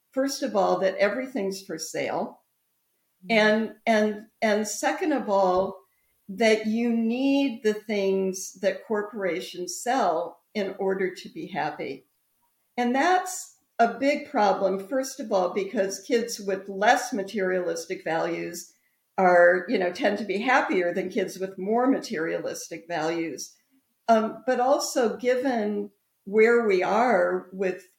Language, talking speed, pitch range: English, 130 wpm, 185-235 Hz